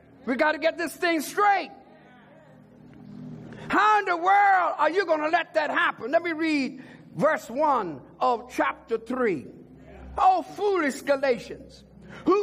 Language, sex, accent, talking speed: English, male, American, 145 wpm